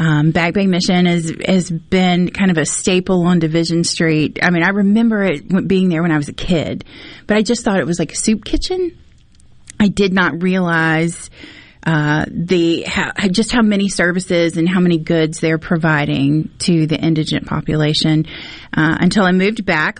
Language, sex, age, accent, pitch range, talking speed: English, female, 30-49, American, 165-195 Hz, 190 wpm